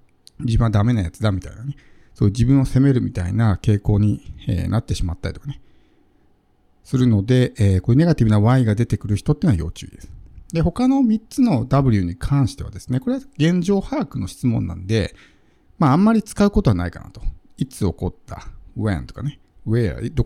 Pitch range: 95-160 Hz